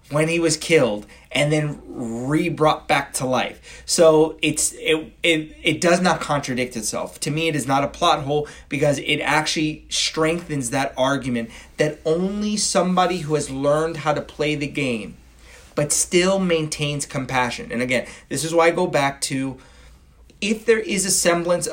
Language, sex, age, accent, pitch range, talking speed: English, male, 30-49, American, 130-165 Hz, 170 wpm